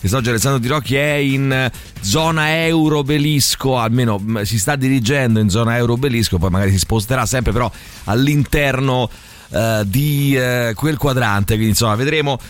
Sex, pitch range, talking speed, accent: male, 105-135 Hz, 145 wpm, native